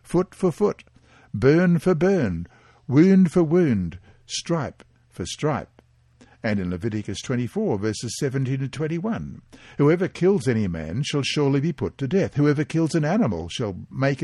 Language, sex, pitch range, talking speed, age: English, male, 115-160 Hz, 150 wpm, 60-79